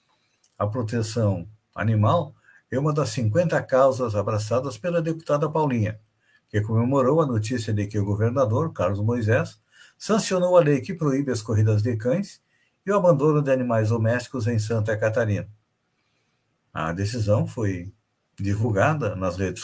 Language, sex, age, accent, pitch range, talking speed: Portuguese, male, 60-79, Brazilian, 105-140 Hz, 140 wpm